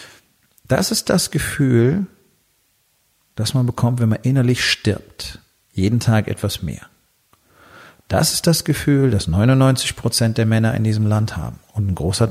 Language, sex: German, male